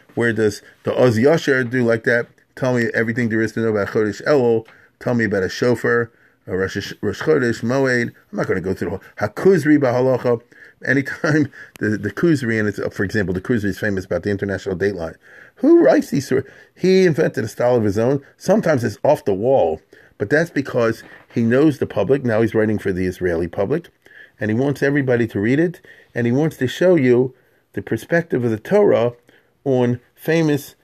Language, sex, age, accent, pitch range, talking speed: English, male, 40-59, American, 110-145 Hz, 200 wpm